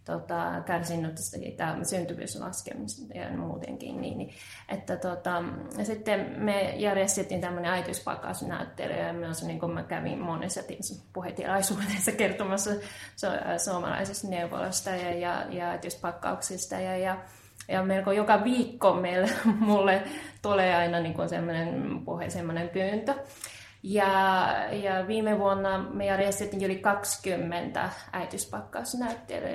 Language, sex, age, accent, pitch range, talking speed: Finnish, female, 20-39, native, 175-205 Hz, 110 wpm